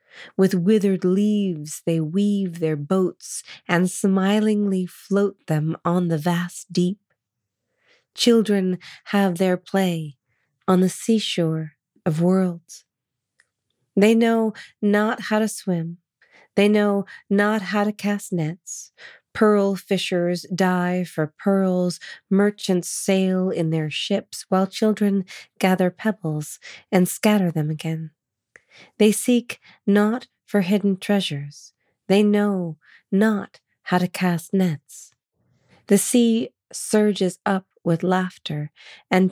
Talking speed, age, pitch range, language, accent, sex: 115 wpm, 30-49, 170-205 Hz, English, American, female